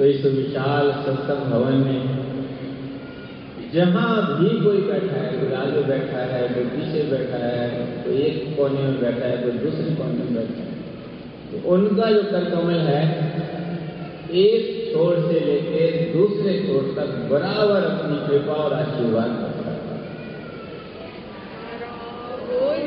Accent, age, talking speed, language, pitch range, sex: native, 50-69, 130 wpm, Hindi, 150-205 Hz, male